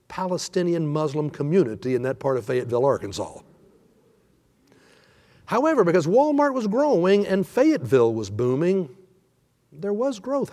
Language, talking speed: English, 120 wpm